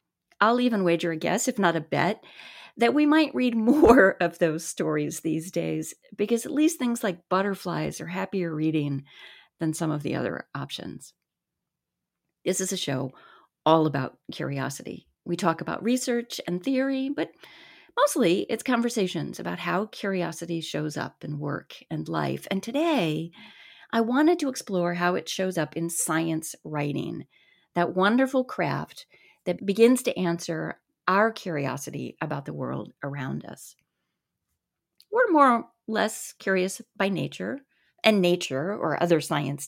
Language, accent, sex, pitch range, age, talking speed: English, American, female, 165-235 Hz, 40-59, 150 wpm